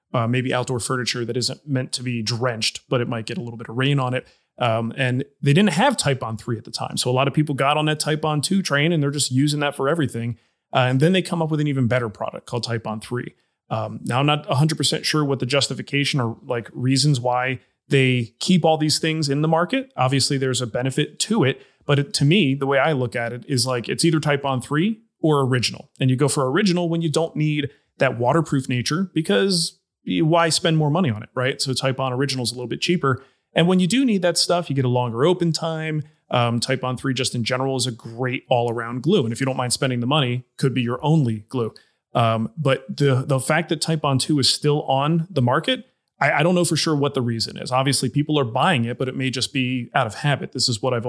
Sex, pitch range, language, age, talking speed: male, 125-160 Hz, English, 30-49, 260 wpm